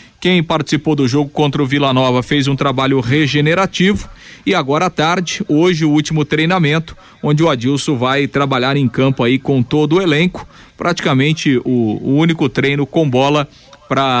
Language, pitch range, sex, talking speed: Portuguese, 130-155 Hz, male, 170 wpm